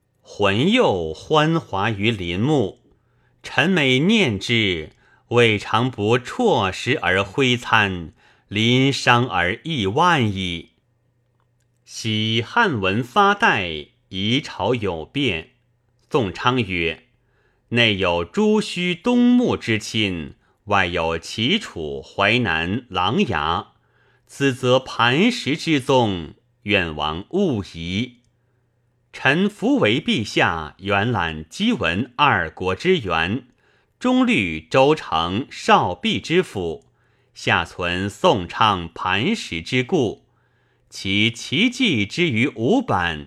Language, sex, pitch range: Chinese, male, 95-130 Hz